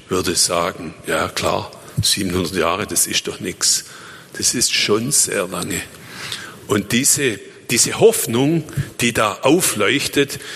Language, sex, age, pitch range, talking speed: German, male, 50-69, 110-145 Hz, 125 wpm